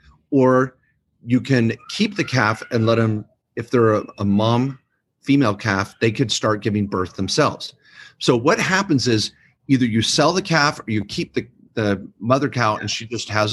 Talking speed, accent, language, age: 185 wpm, American, English, 40-59